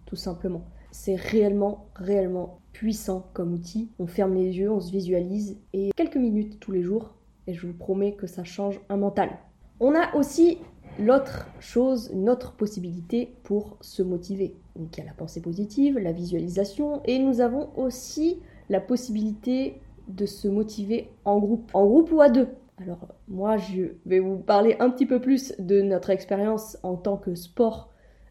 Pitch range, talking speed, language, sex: 185-230 Hz, 175 wpm, French, female